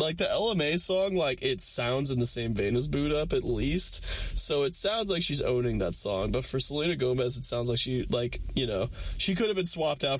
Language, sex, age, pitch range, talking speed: English, male, 20-39, 100-150 Hz, 240 wpm